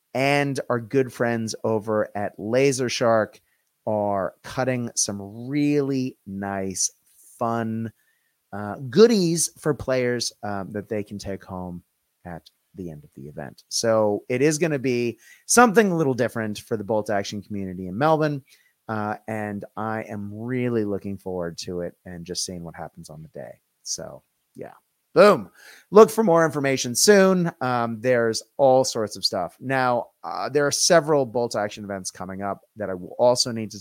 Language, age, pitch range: English, 30-49, 105-140 Hz